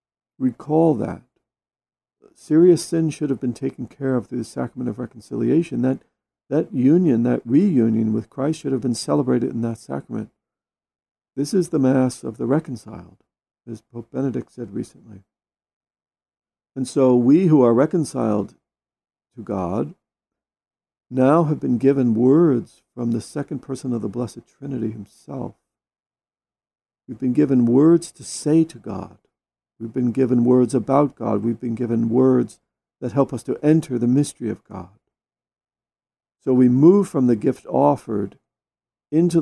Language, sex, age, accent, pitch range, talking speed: English, male, 50-69, American, 115-145 Hz, 150 wpm